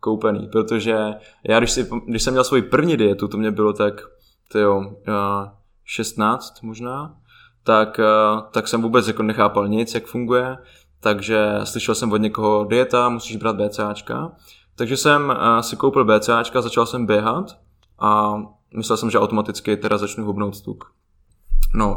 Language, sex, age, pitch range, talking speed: Slovak, male, 20-39, 105-120 Hz, 155 wpm